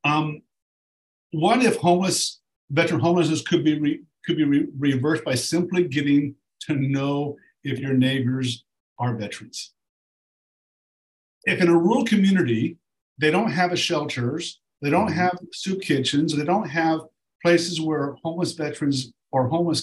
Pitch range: 135-170 Hz